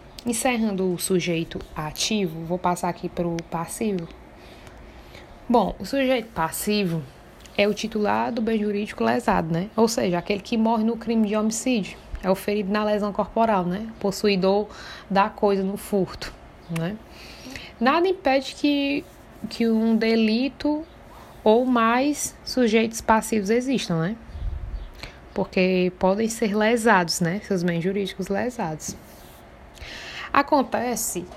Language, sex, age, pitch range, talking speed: Portuguese, female, 20-39, 180-230 Hz, 125 wpm